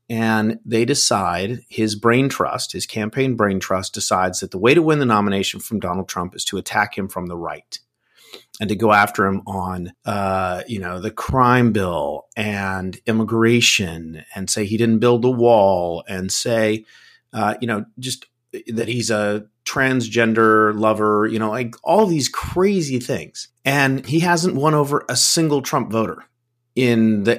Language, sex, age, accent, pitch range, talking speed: English, male, 30-49, American, 100-120 Hz, 170 wpm